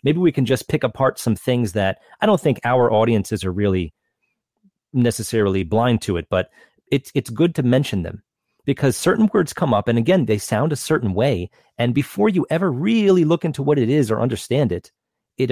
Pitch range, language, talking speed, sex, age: 105-140 Hz, English, 205 wpm, male, 30-49